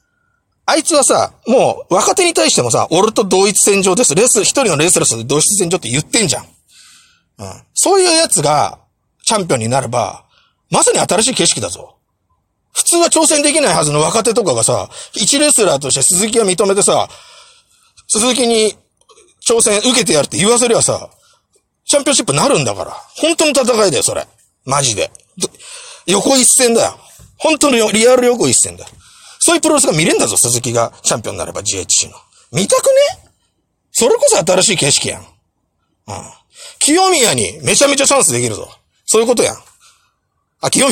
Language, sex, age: Japanese, male, 40-59